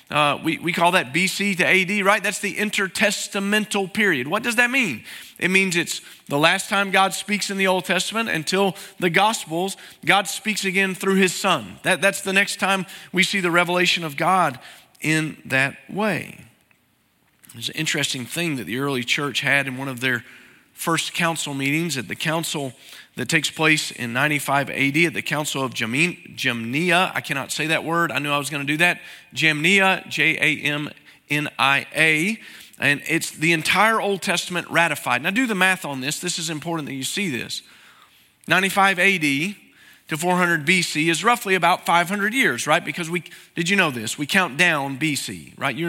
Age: 40-59